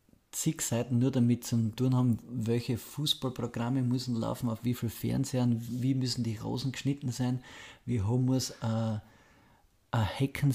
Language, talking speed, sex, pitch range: German, 155 wpm, male, 110-130 Hz